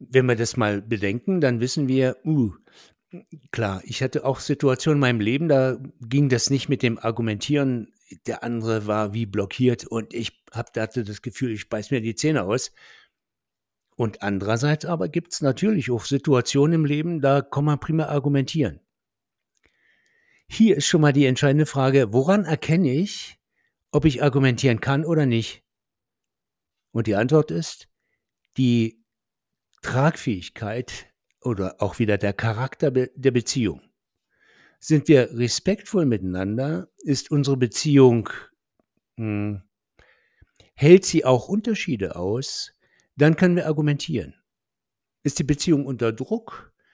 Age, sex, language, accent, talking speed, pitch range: 60-79, male, German, German, 135 wpm, 115-155 Hz